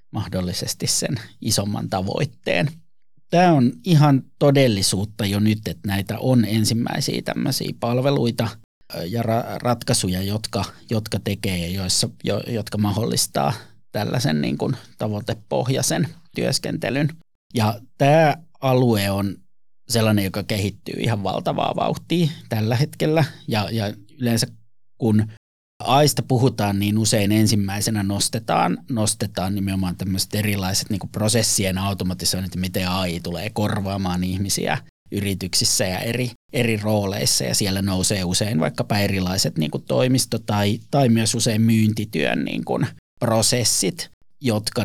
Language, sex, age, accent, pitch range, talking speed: English, male, 30-49, Finnish, 100-120 Hz, 115 wpm